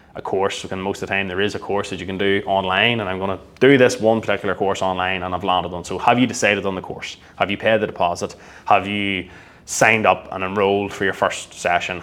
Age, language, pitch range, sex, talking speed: 20-39, English, 95-105 Hz, male, 255 wpm